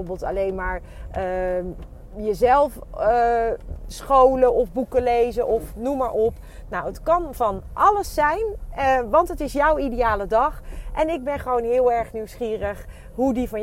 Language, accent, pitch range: Dutch, Dutch, 200-250 Hz